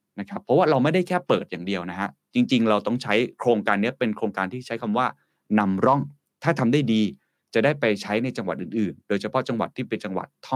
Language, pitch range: Thai, 100-135 Hz